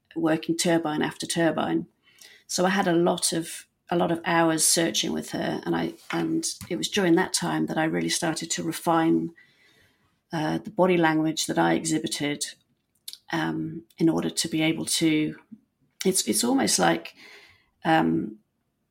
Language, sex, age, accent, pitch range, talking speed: English, female, 40-59, British, 155-175 Hz, 160 wpm